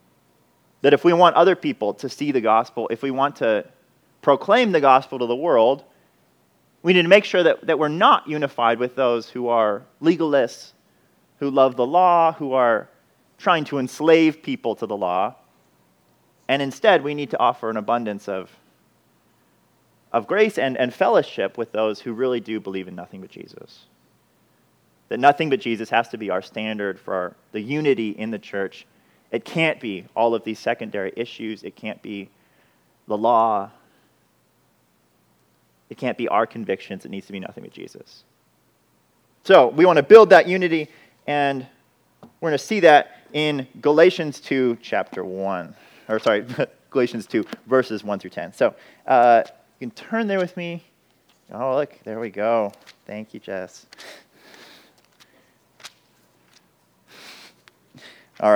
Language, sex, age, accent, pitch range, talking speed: English, male, 30-49, American, 110-150 Hz, 160 wpm